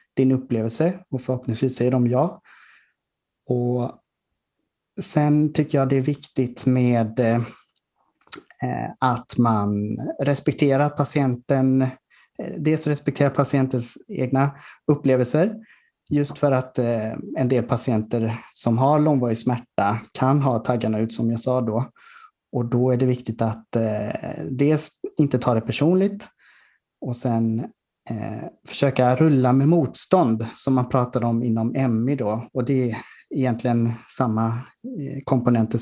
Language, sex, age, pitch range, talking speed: Swedish, male, 20-39, 115-135 Hz, 125 wpm